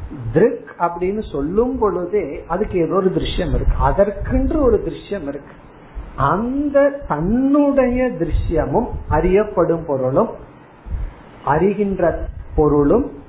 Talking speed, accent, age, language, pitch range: 75 wpm, native, 50-69, Tamil, 145-210 Hz